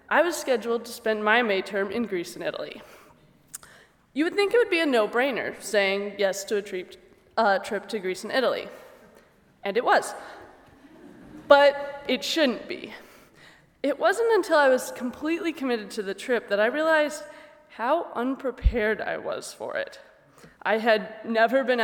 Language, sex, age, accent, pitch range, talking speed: English, female, 20-39, American, 205-285 Hz, 160 wpm